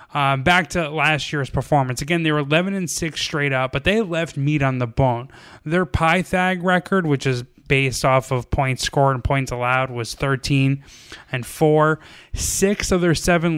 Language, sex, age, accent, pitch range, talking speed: English, male, 20-39, American, 125-150 Hz, 185 wpm